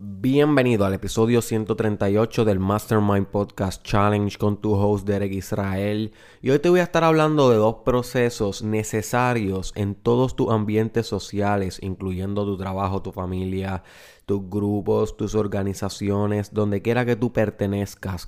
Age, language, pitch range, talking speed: 20-39, Spanish, 100-120 Hz, 140 wpm